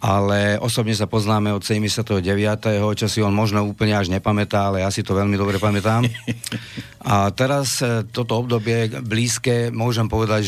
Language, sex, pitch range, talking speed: Slovak, male, 100-115 Hz, 150 wpm